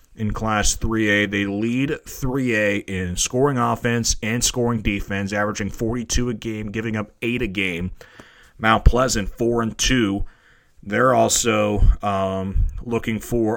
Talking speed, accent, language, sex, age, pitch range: 135 wpm, American, English, male, 30-49, 100-120 Hz